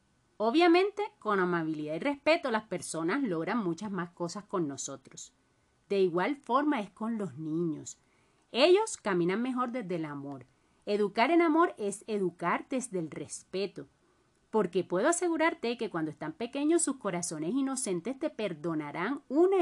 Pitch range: 170-285 Hz